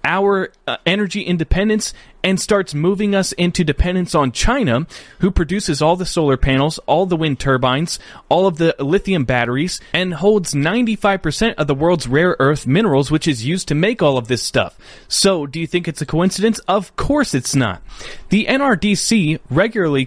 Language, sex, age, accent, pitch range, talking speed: English, male, 30-49, American, 135-190 Hz, 180 wpm